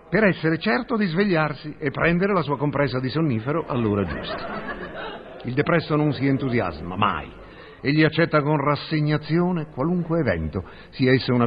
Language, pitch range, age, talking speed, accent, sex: Italian, 120-160 Hz, 50-69, 150 wpm, native, male